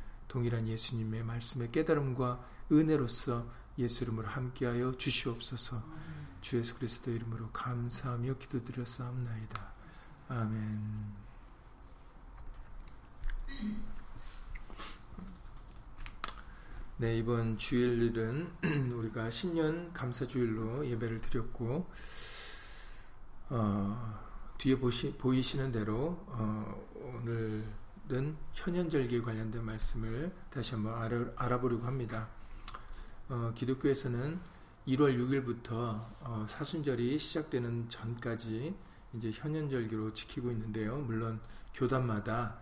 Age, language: 40-59, Korean